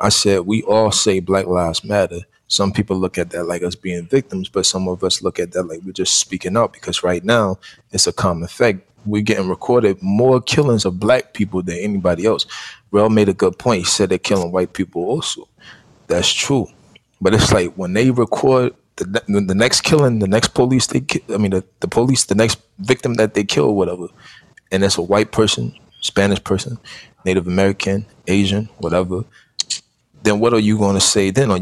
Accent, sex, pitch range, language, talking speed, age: American, male, 95-110 Hz, English, 205 wpm, 20-39